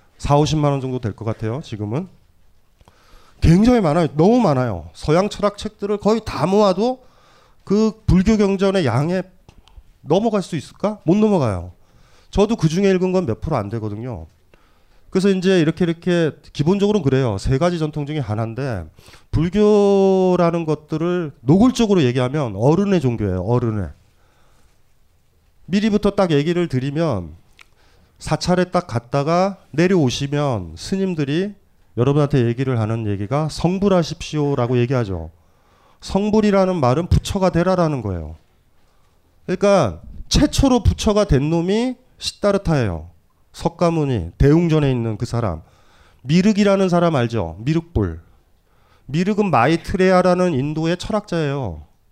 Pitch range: 115-185 Hz